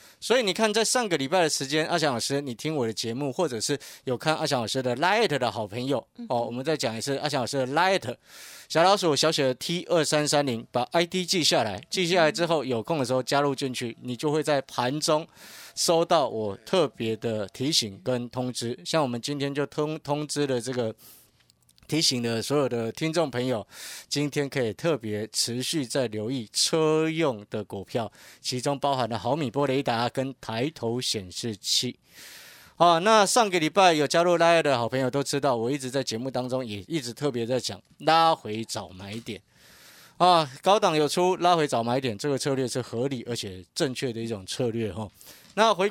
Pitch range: 120-155 Hz